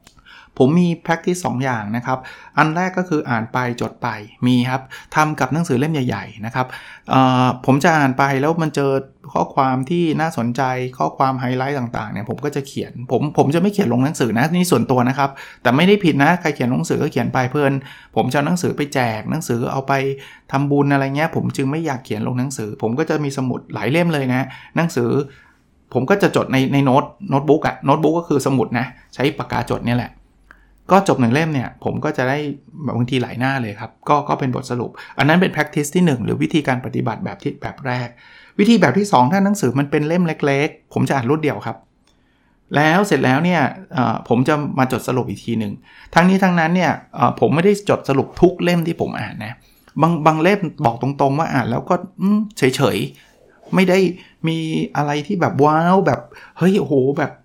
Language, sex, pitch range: Thai, male, 125-160 Hz